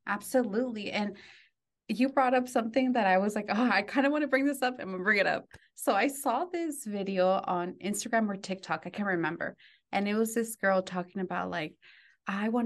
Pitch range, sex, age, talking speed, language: 185-230 Hz, female, 20-39, 220 wpm, English